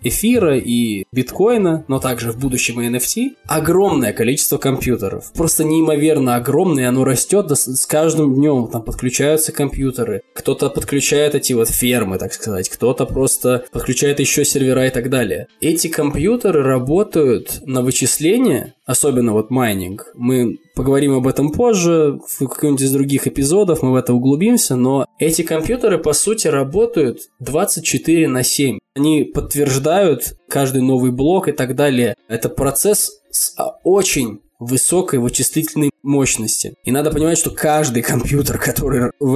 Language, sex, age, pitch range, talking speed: Russian, male, 20-39, 125-150 Hz, 140 wpm